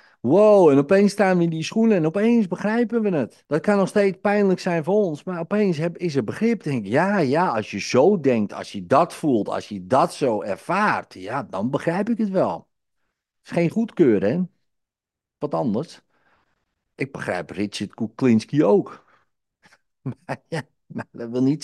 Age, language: 50-69, Dutch